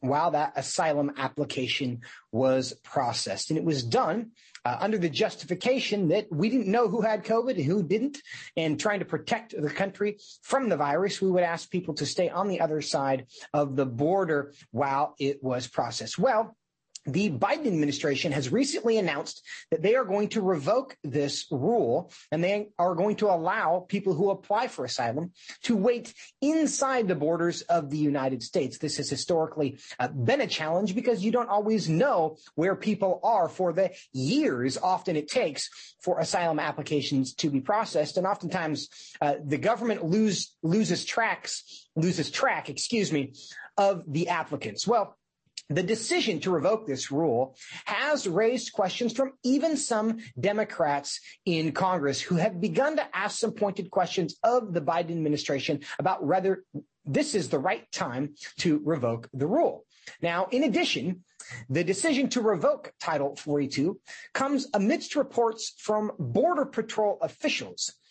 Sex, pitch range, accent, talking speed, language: male, 150-220 Hz, American, 160 wpm, English